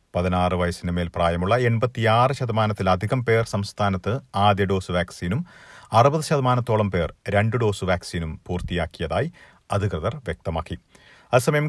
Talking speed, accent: 105 wpm, native